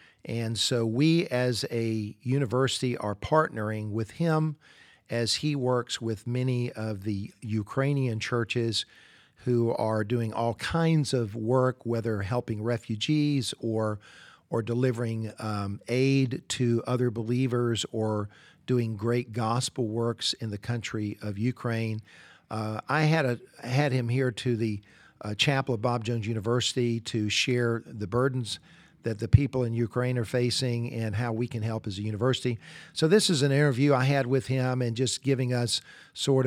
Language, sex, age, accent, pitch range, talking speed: English, male, 50-69, American, 110-130 Hz, 155 wpm